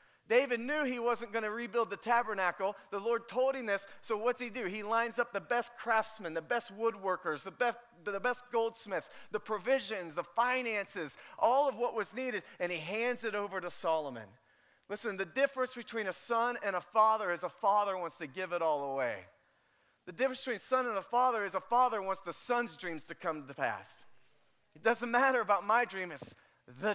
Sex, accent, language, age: male, American, English, 30-49